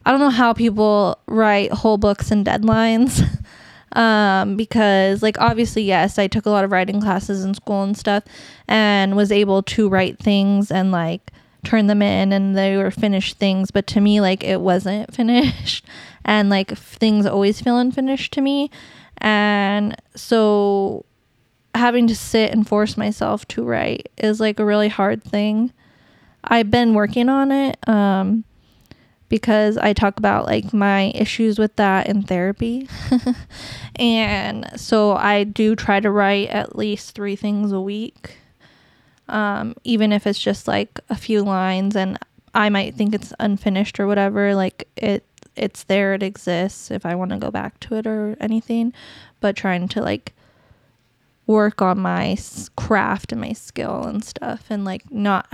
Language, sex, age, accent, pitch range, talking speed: English, female, 20-39, American, 195-220 Hz, 165 wpm